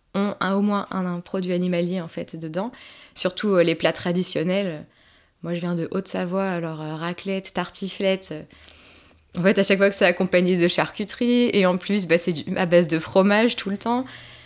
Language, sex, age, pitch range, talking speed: French, female, 20-39, 175-200 Hz, 200 wpm